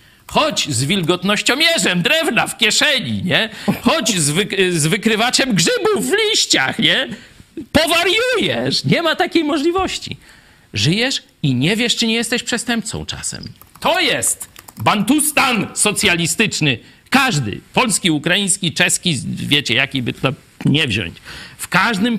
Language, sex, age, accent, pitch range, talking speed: Polish, male, 50-69, native, 145-220 Hz, 125 wpm